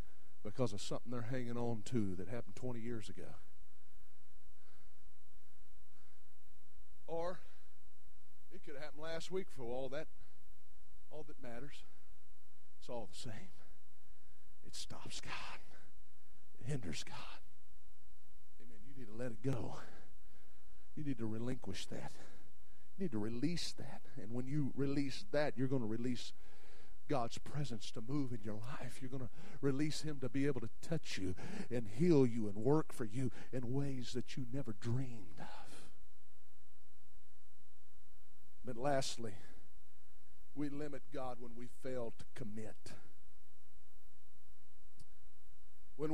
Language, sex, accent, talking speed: English, male, American, 135 wpm